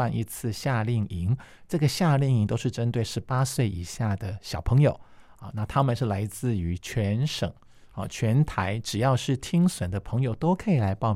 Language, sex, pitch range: Chinese, male, 100-130 Hz